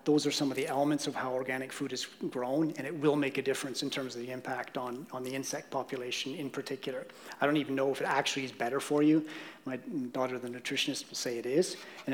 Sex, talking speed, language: male, 245 wpm, English